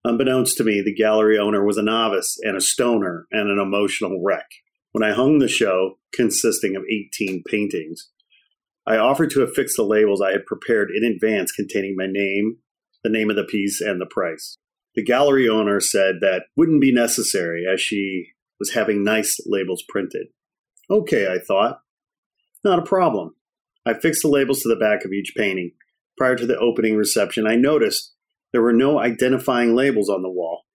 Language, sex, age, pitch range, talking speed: English, male, 40-59, 100-125 Hz, 180 wpm